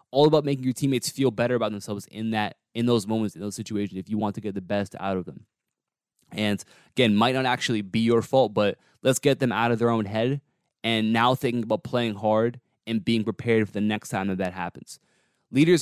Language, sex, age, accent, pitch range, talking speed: English, male, 20-39, American, 105-120 Hz, 230 wpm